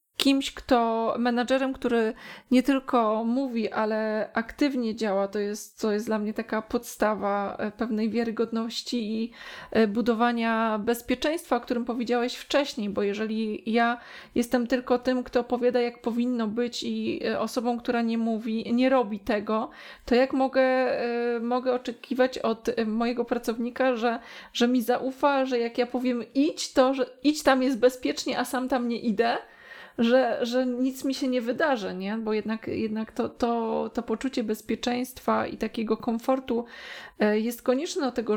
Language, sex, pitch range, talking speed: Polish, female, 220-255 Hz, 150 wpm